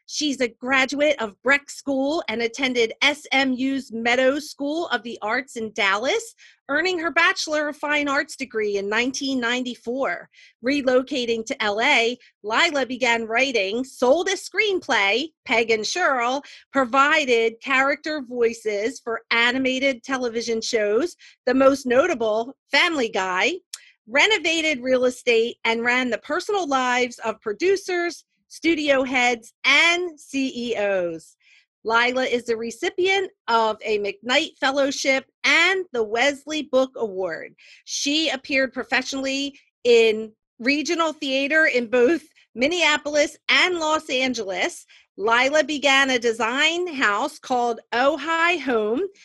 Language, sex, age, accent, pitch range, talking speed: English, female, 40-59, American, 235-300 Hz, 115 wpm